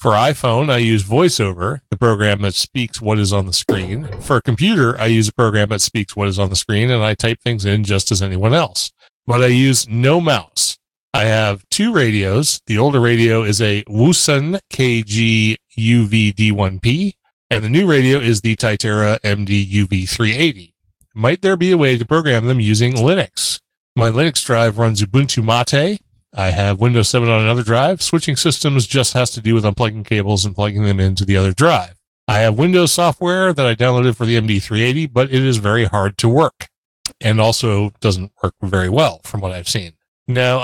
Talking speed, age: 190 wpm, 30-49